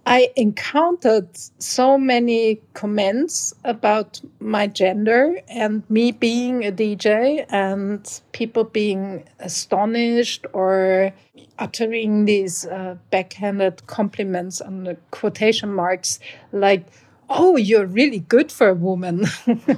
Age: 50-69